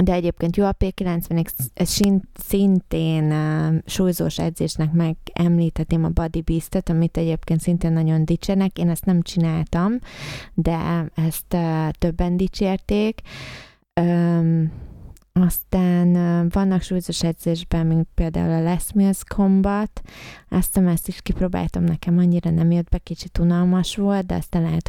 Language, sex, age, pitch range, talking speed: Hungarian, female, 20-39, 165-185 Hz, 125 wpm